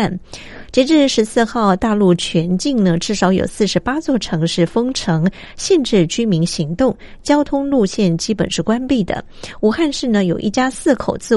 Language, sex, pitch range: Chinese, female, 185-240 Hz